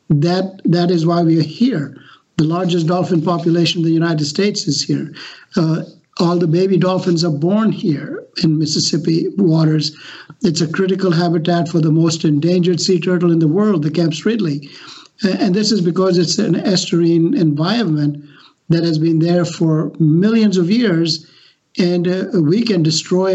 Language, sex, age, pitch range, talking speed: English, male, 60-79, 165-190 Hz, 165 wpm